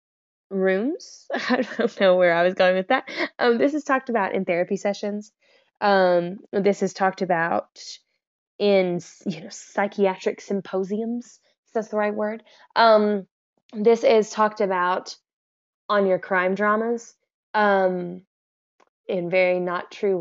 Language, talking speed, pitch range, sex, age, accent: English, 140 wpm, 185-235 Hz, female, 10-29, American